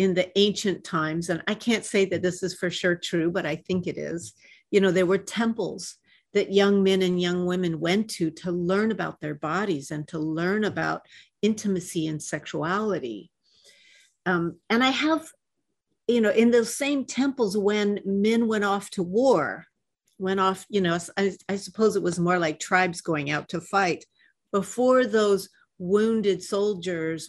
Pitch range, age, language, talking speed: 185-235 Hz, 50-69, English, 175 wpm